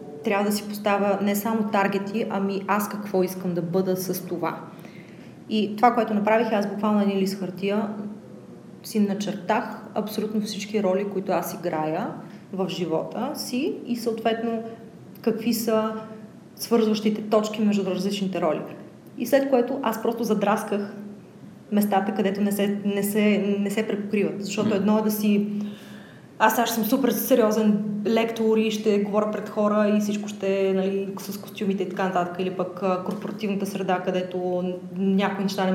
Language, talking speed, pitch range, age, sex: Bulgarian, 155 wpm, 195-220 Hz, 30-49, female